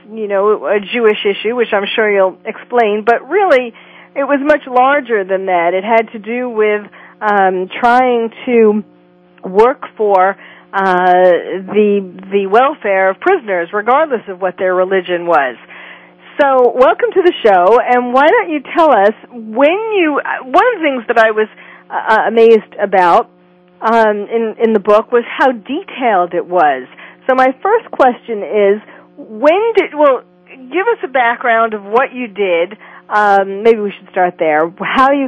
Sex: female